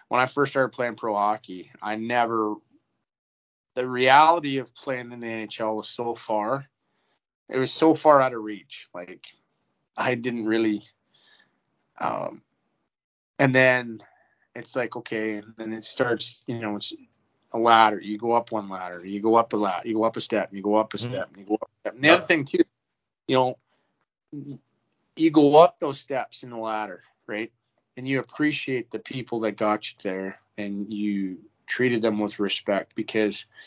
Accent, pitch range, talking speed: American, 100-125 Hz, 180 wpm